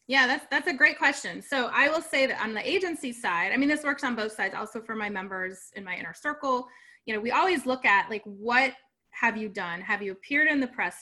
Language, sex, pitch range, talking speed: English, female, 210-270 Hz, 255 wpm